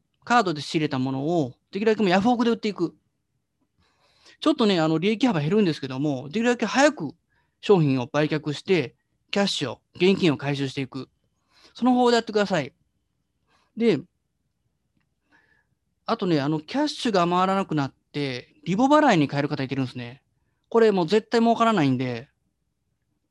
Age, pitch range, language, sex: 30-49, 140-220 Hz, Japanese, male